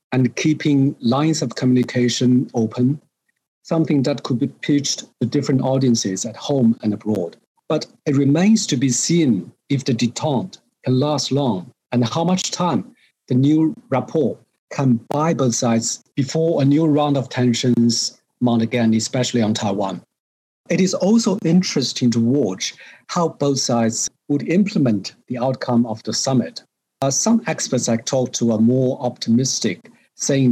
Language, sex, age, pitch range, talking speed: English, male, 50-69, 115-140 Hz, 155 wpm